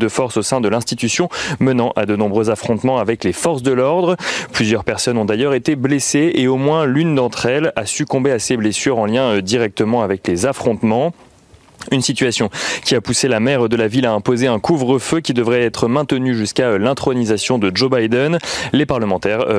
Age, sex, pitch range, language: 30-49, male, 115-145 Hz, French